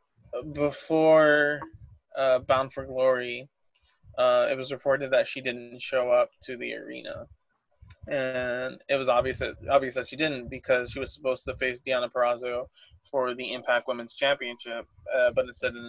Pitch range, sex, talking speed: 120-140 Hz, male, 160 wpm